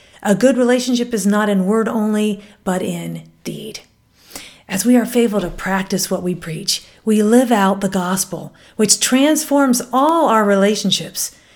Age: 50-69